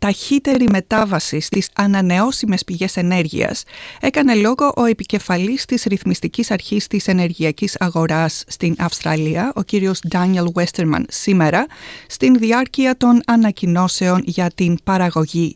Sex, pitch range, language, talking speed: female, 185-255 Hz, Greek, 115 wpm